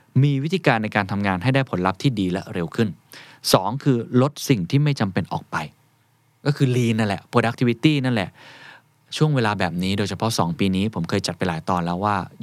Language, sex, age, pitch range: Thai, male, 20-39, 100-140 Hz